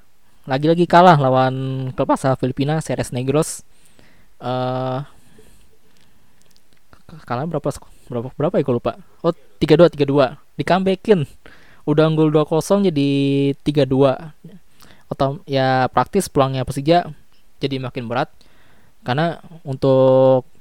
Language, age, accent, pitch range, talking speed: Indonesian, 20-39, native, 120-145 Hz, 100 wpm